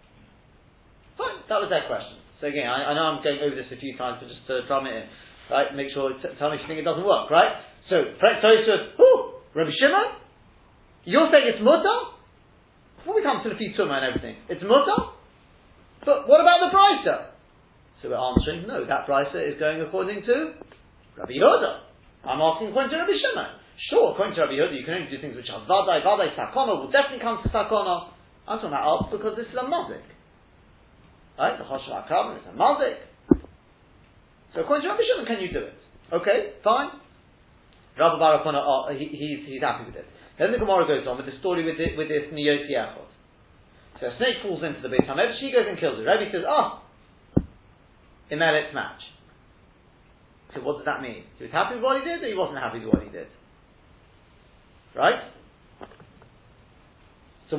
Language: English